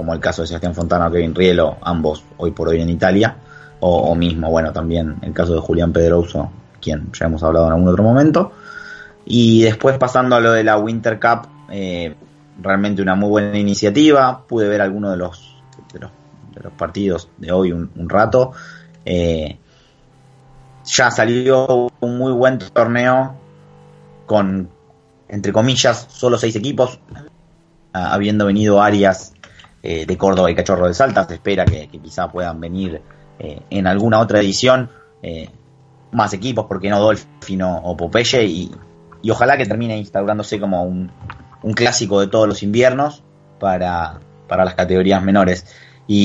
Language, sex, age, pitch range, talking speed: Spanish, male, 30-49, 85-120 Hz, 165 wpm